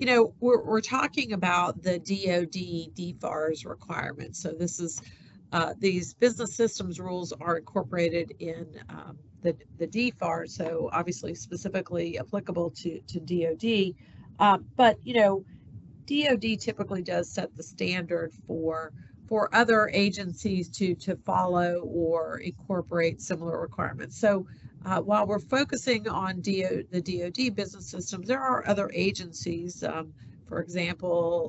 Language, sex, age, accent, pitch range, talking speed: English, female, 50-69, American, 170-195 Hz, 135 wpm